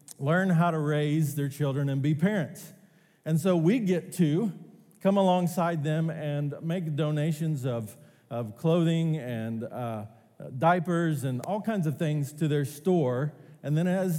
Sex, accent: male, American